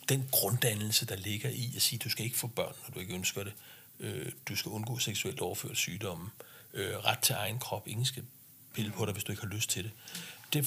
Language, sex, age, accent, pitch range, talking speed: Danish, male, 60-79, native, 110-130 Hz, 230 wpm